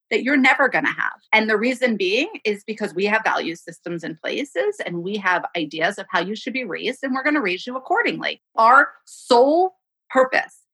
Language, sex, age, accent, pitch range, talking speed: English, female, 30-49, American, 200-275 Hz, 210 wpm